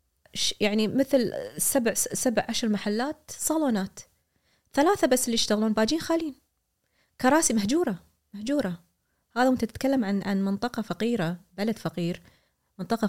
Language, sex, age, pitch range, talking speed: Arabic, female, 20-39, 180-235 Hz, 120 wpm